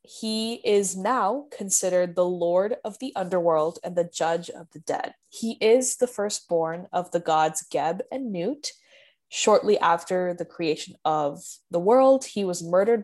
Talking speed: 160 wpm